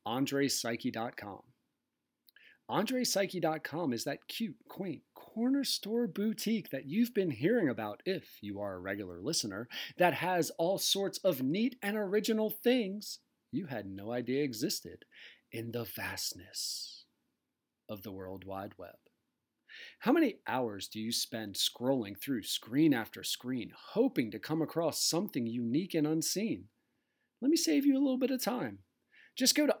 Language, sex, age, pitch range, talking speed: English, male, 40-59, 120-195 Hz, 145 wpm